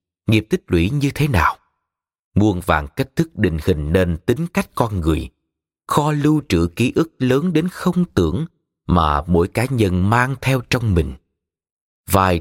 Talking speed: 170 wpm